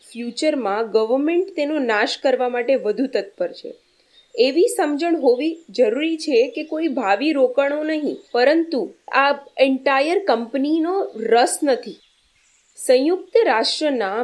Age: 20-39